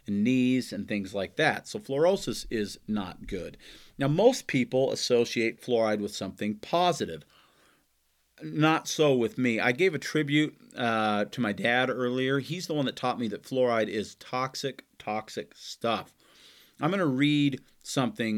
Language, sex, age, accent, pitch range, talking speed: English, male, 40-59, American, 110-145 Hz, 160 wpm